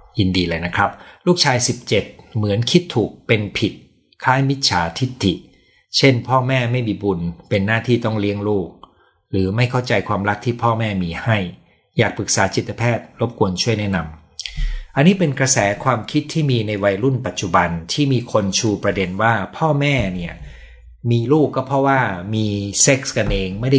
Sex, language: male, Thai